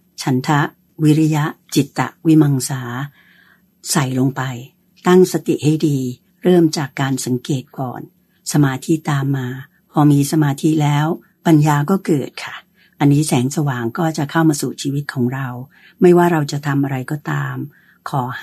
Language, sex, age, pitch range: Thai, female, 60-79, 135-165 Hz